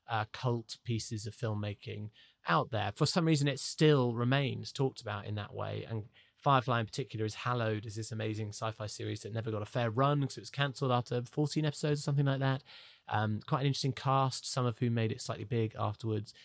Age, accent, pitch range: 30-49, British, 110-130 Hz